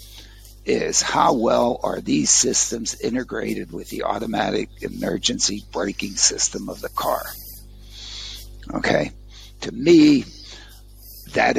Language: English